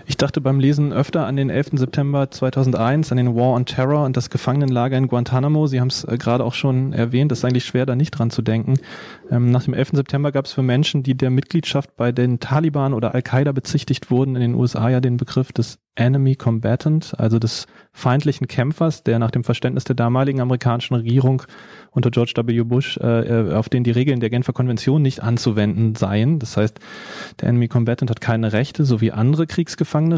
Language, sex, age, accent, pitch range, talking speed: German, male, 30-49, German, 120-135 Hz, 205 wpm